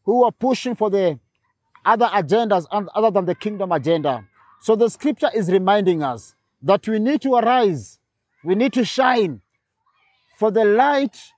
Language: English